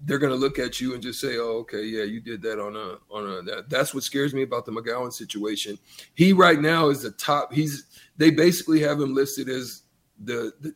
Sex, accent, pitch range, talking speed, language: male, American, 125-155 Hz, 240 wpm, English